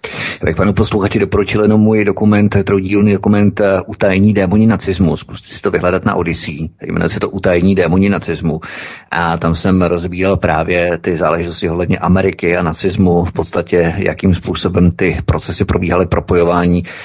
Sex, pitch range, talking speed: male, 90-100 Hz, 160 wpm